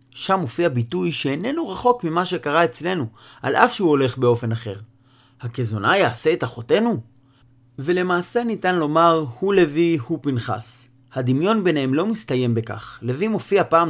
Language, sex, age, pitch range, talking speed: Hebrew, male, 30-49, 120-170 Hz, 140 wpm